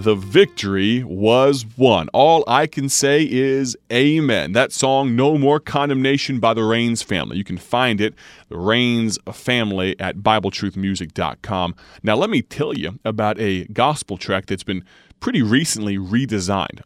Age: 30-49